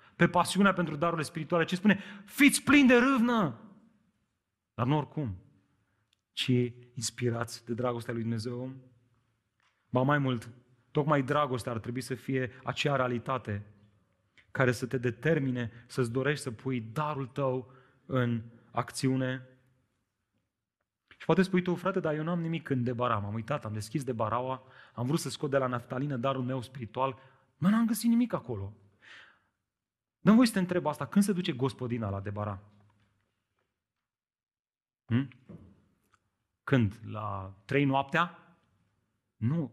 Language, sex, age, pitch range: Romanian, male, 30-49, 115-155 Hz